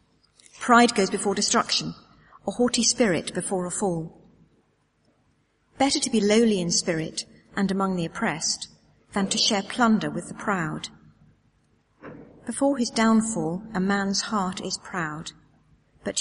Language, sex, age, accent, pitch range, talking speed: English, female, 40-59, British, 180-235 Hz, 135 wpm